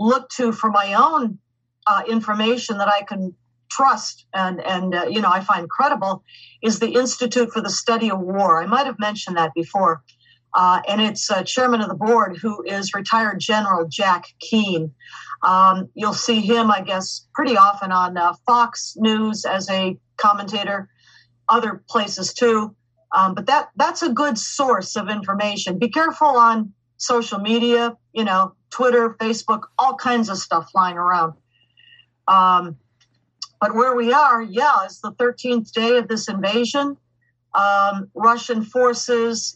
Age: 50-69